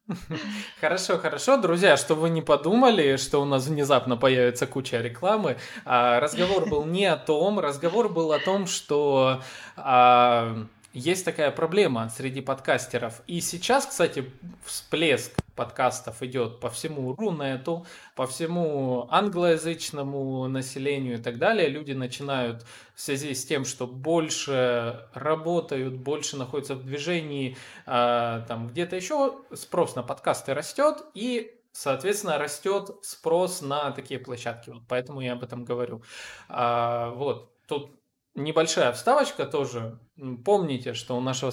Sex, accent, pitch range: male, native, 125-180 Hz